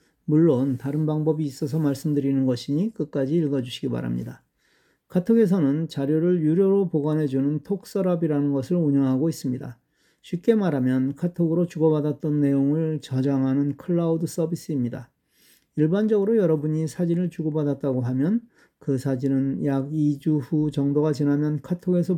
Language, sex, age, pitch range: Korean, male, 40-59, 140-180 Hz